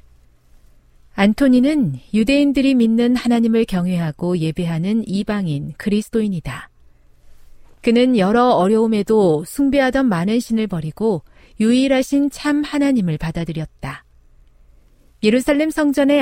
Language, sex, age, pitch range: Korean, female, 40-59, 155-230 Hz